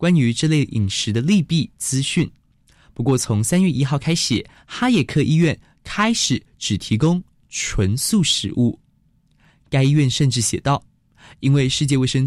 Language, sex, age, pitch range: Chinese, male, 20-39, 120-175 Hz